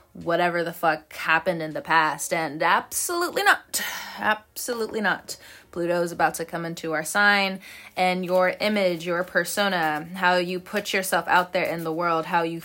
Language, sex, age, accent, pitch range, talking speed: English, female, 20-39, American, 175-240 Hz, 170 wpm